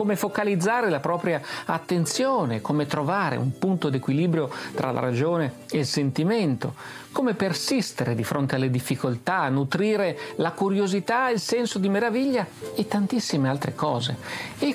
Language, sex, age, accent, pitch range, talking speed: Italian, male, 50-69, native, 130-195 Hz, 140 wpm